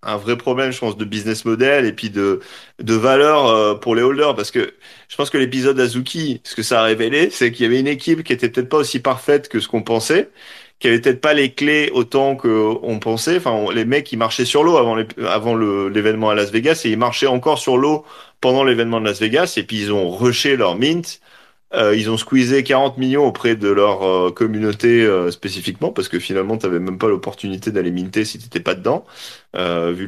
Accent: French